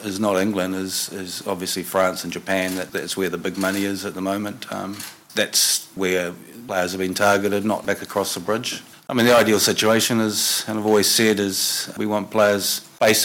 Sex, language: male, English